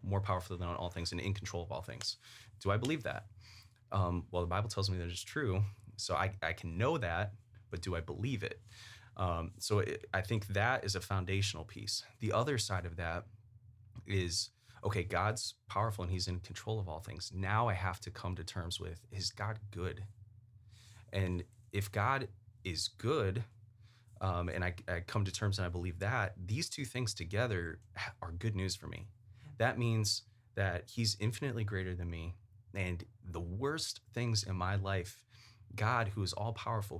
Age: 20-39